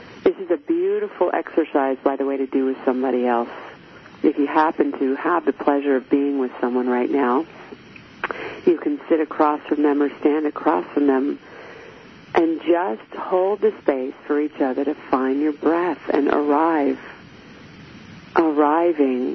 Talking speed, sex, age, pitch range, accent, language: 160 wpm, female, 50-69, 140-180 Hz, American, English